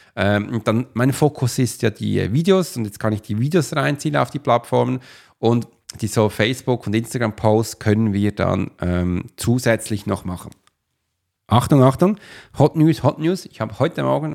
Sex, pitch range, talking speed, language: male, 105-135 Hz, 170 wpm, German